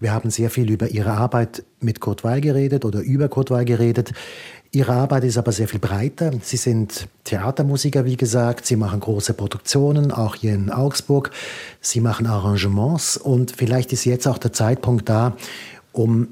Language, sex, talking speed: German, male, 175 wpm